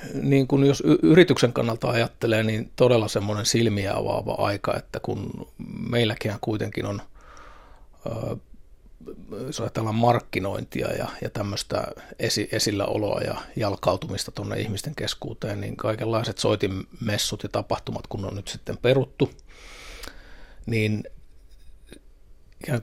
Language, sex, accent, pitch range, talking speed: Finnish, male, native, 105-120 Hz, 110 wpm